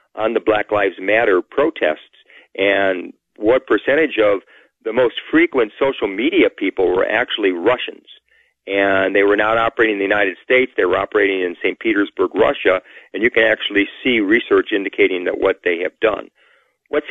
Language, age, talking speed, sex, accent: English, 50-69, 170 wpm, male, American